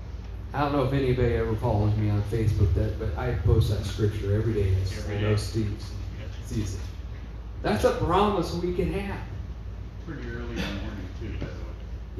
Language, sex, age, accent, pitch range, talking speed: English, male, 40-59, American, 95-120 Hz, 150 wpm